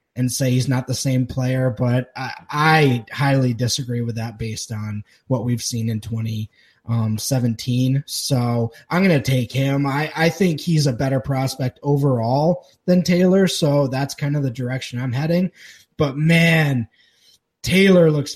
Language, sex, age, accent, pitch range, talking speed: English, male, 20-39, American, 125-155 Hz, 160 wpm